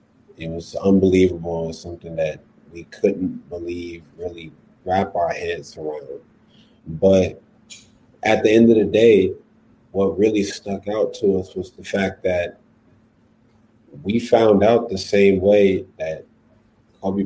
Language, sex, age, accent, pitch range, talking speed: English, male, 30-49, American, 90-105 Hz, 140 wpm